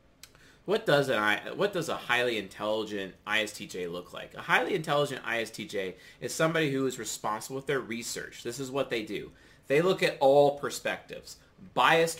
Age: 30-49